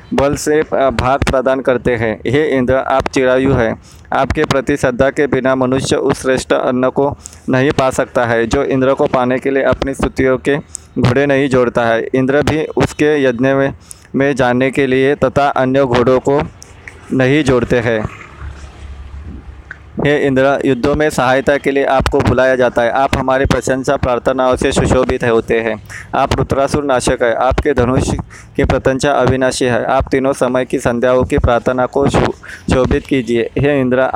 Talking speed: 165 wpm